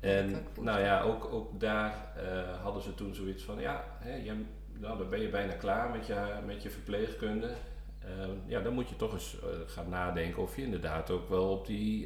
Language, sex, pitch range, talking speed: Dutch, male, 85-100 Hz, 215 wpm